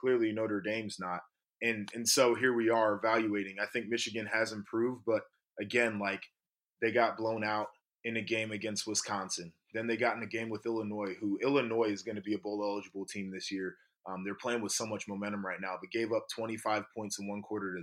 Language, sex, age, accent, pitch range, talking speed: English, male, 20-39, American, 100-115 Hz, 220 wpm